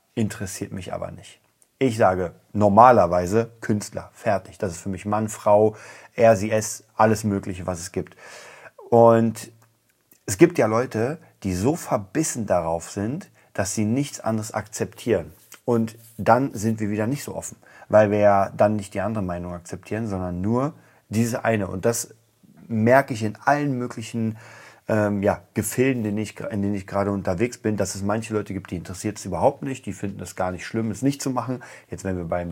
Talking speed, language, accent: 185 wpm, German, German